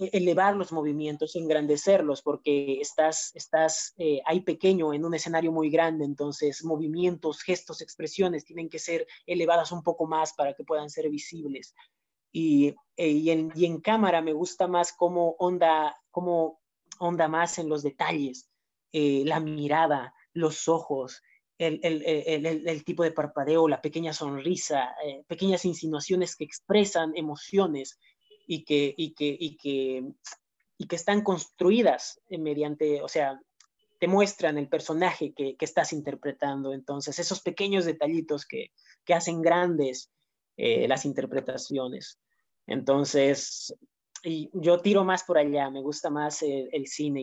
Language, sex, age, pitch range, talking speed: Spanish, male, 30-49, 150-175 Hz, 140 wpm